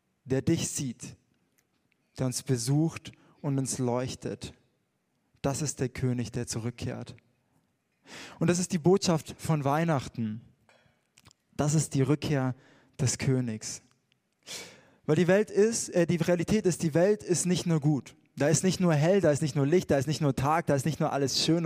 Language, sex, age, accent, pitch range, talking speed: German, male, 20-39, German, 130-170 Hz, 175 wpm